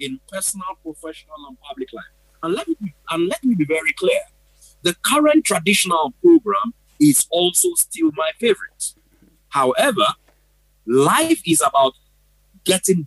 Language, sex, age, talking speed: English, male, 50-69, 140 wpm